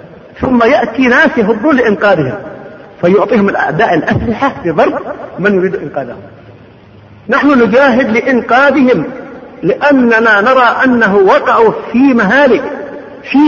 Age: 50-69